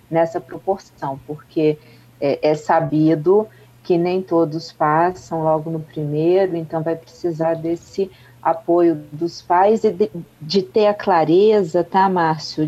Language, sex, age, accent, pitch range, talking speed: Portuguese, female, 40-59, Brazilian, 160-195 Hz, 135 wpm